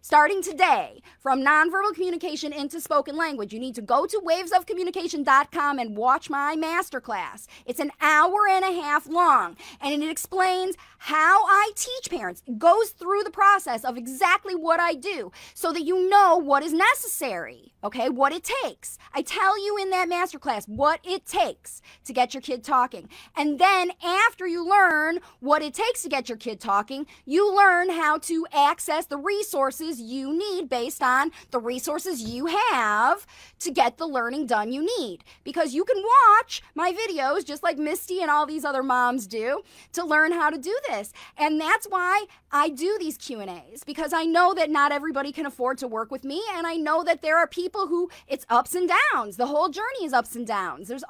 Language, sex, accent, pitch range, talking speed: English, female, American, 280-370 Hz, 190 wpm